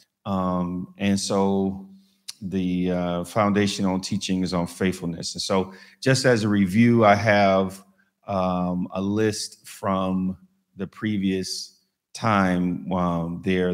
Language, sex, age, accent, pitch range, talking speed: English, male, 40-59, American, 90-110 Hz, 120 wpm